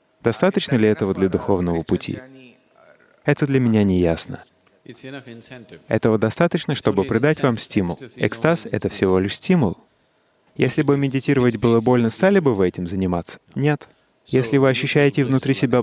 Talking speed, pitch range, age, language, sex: 145 wpm, 100-145 Hz, 30-49, English, male